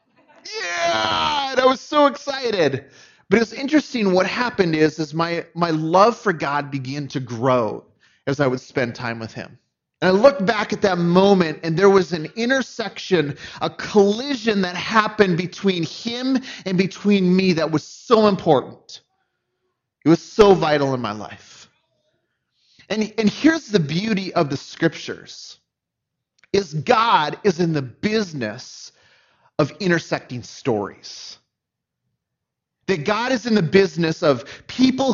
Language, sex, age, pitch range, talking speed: English, male, 30-49, 155-215 Hz, 145 wpm